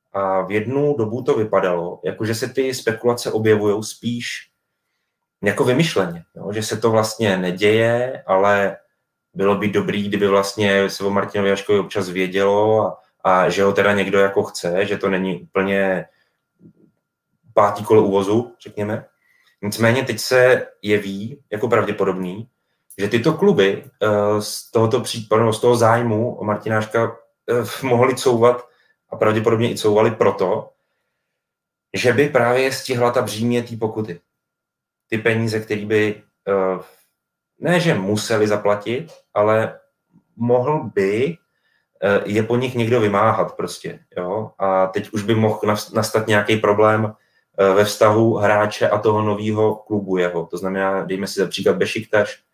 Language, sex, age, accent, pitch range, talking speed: Czech, male, 30-49, native, 100-115 Hz, 140 wpm